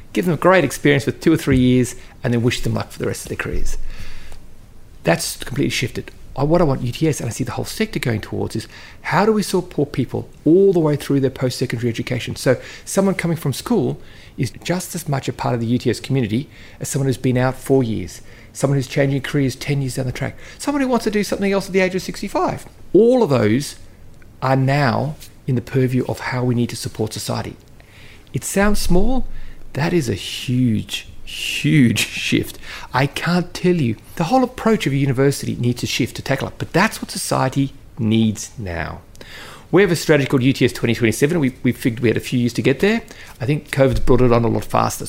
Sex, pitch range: male, 110-150 Hz